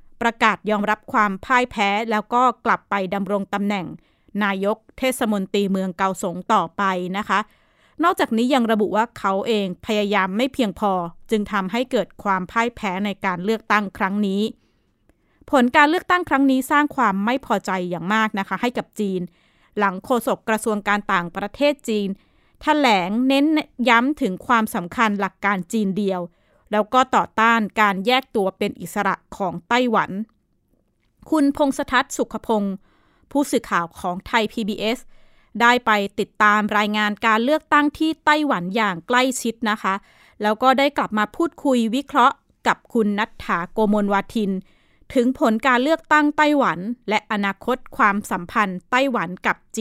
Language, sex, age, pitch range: Thai, female, 20-39, 200-250 Hz